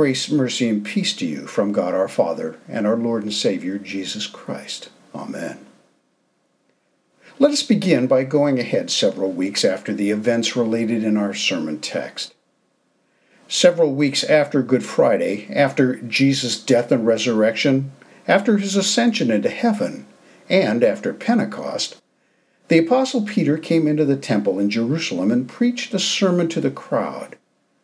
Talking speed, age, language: 145 wpm, 50-69, English